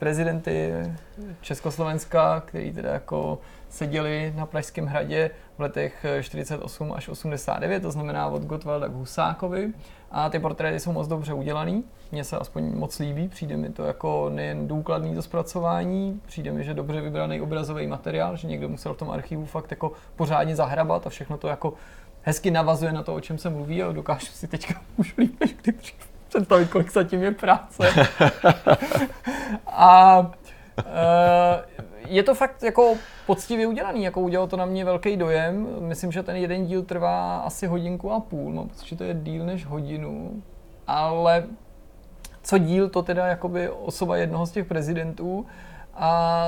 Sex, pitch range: male, 145-185 Hz